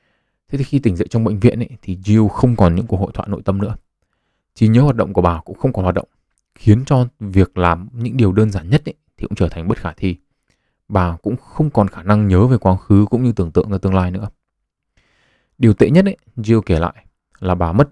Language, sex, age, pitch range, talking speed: Vietnamese, male, 20-39, 90-120 Hz, 250 wpm